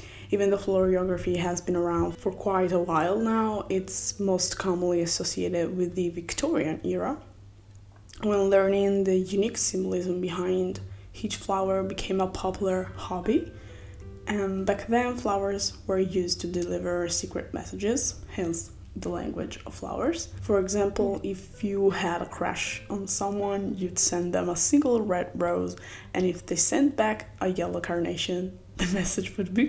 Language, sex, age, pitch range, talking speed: English, female, 10-29, 175-200 Hz, 150 wpm